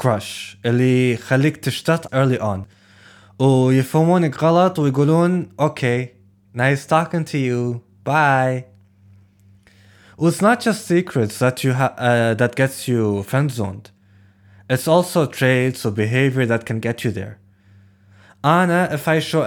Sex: male